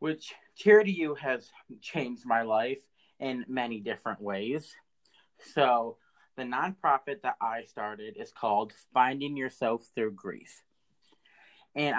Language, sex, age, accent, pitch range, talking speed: English, male, 30-49, American, 115-140 Hz, 125 wpm